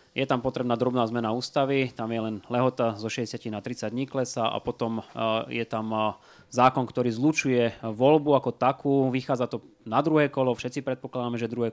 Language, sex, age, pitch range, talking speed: Slovak, male, 20-39, 115-130 Hz, 175 wpm